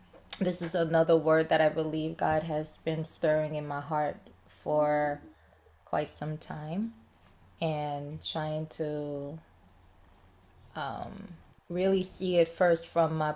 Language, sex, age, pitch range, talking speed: English, female, 20-39, 145-175 Hz, 125 wpm